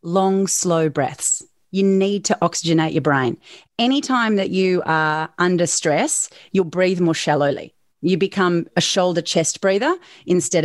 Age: 30-49